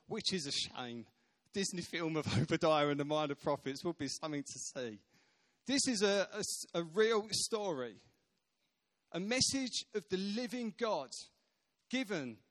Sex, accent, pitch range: male, British, 150-210 Hz